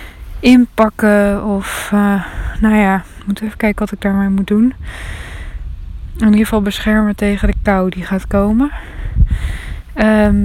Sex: female